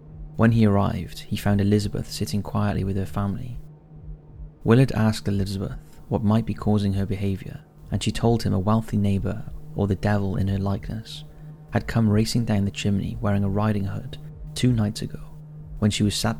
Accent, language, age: British, English, 30-49